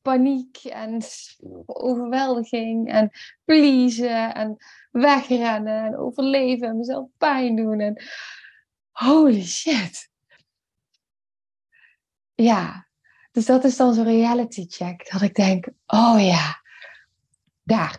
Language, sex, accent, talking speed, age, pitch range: Dutch, female, Dutch, 95 wpm, 20-39, 180-240 Hz